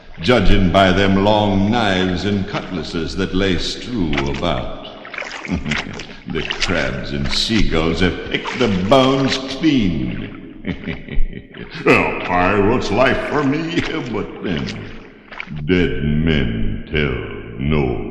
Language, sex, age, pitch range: English, male, 60-79, 90-135 Hz